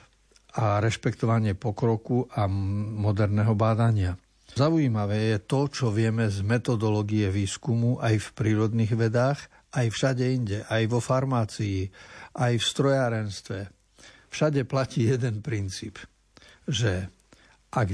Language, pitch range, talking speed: Slovak, 105-135 Hz, 110 wpm